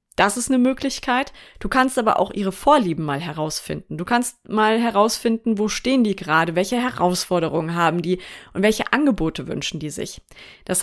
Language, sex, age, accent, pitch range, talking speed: German, female, 30-49, German, 180-235 Hz, 170 wpm